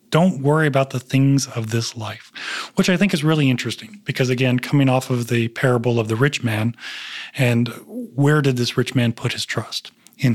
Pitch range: 115-135 Hz